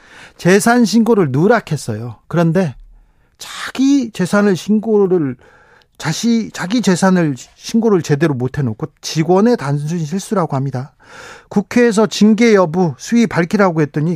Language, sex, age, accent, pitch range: Korean, male, 40-59, native, 150-210 Hz